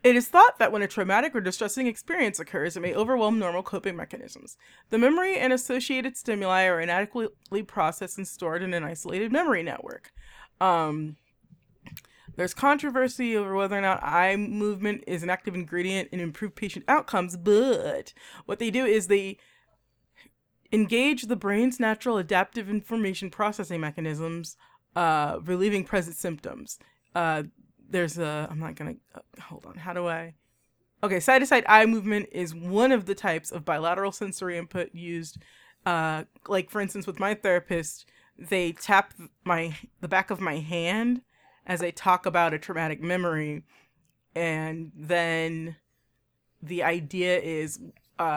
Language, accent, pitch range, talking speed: English, American, 170-215 Hz, 150 wpm